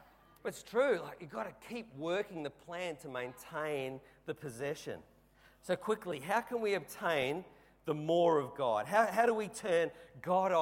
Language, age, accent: English, 40-59, Australian